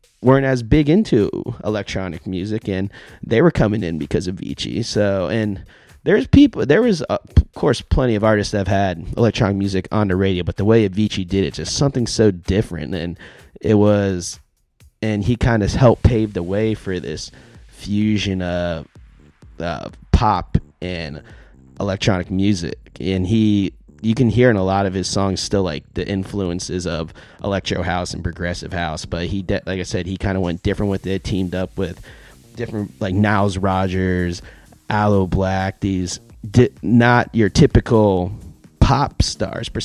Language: English